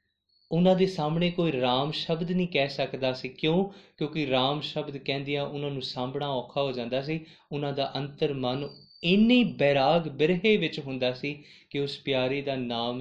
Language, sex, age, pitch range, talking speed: Punjabi, male, 20-39, 125-165 Hz, 165 wpm